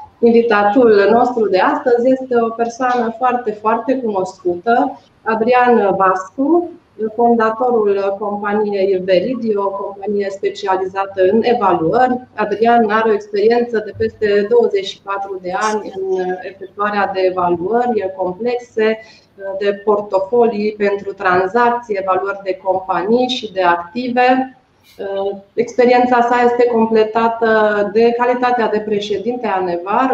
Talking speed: 110 wpm